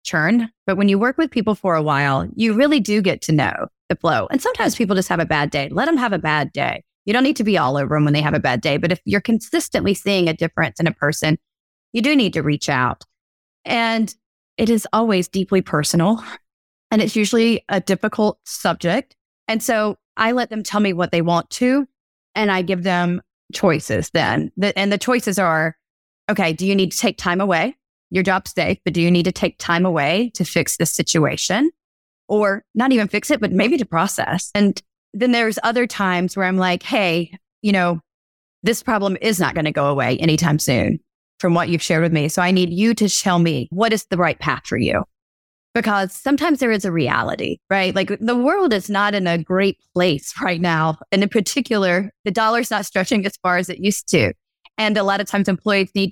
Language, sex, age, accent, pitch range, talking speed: English, female, 30-49, American, 170-220 Hz, 220 wpm